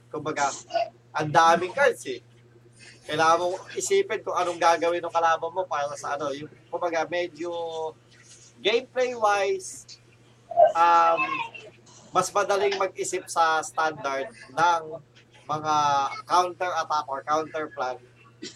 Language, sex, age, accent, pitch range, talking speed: Filipino, male, 20-39, native, 120-170 Hz, 105 wpm